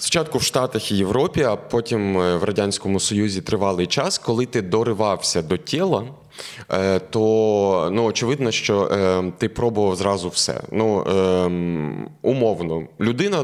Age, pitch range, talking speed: 20-39, 90-120 Hz, 135 wpm